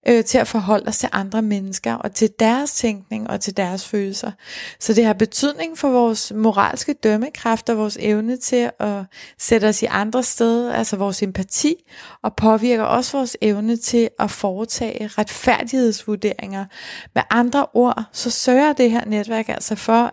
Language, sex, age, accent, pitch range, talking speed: Danish, female, 30-49, native, 210-240 Hz, 160 wpm